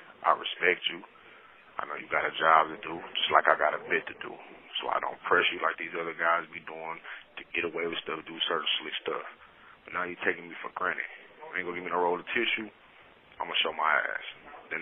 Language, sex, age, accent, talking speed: English, male, 30-49, American, 245 wpm